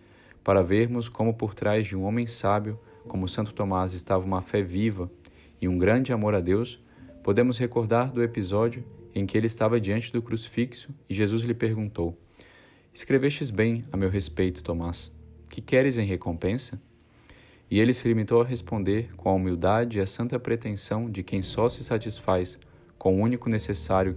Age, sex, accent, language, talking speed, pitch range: 20-39, male, Brazilian, Portuguese, 170 wpm, 95-115 Hz